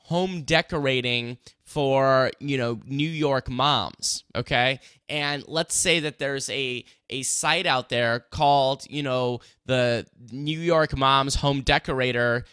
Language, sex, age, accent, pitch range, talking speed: English, male, 20-39, American, 125-160 Hz, 135 wpm